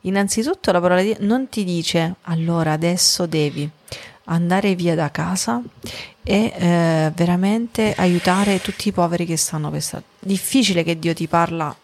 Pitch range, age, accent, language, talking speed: 175-225 Hz, 30-49, native, Italian, 155 wpm